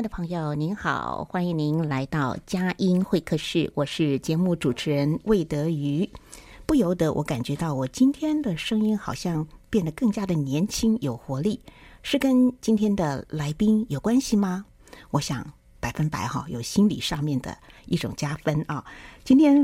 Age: 50-69